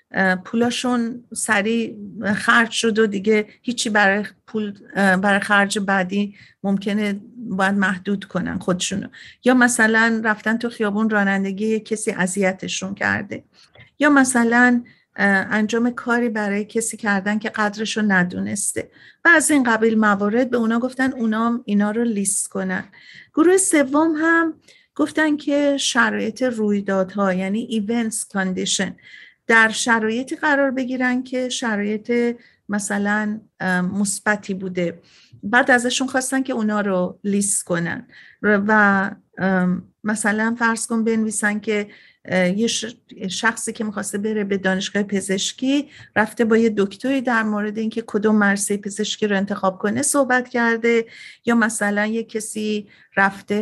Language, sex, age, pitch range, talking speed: Persian, female, 50-69, 200-235 Hz, 125 wpm